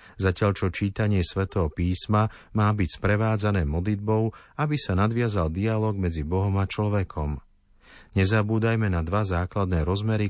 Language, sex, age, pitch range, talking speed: Slovak, male, 50-69, 90-110 Hz, 130 wpm